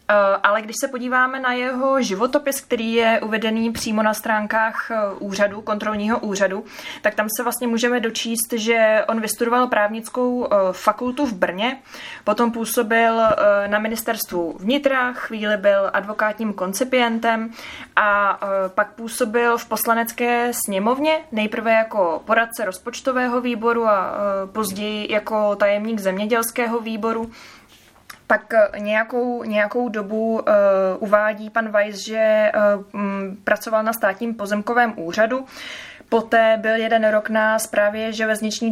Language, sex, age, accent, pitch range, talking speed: Czech, female, 20-39, native, 205-235 Hz, 115 wpm